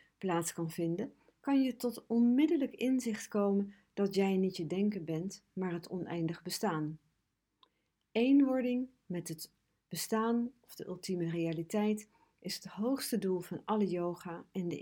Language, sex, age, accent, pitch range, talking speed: English, female, 50-69, Dutch, 170-225 Hz, 145 wpm